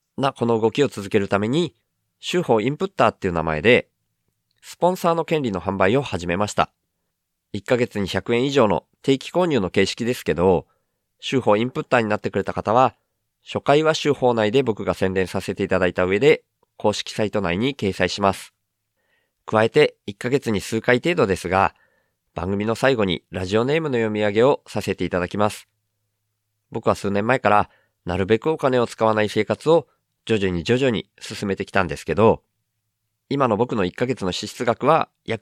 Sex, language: male, Japanese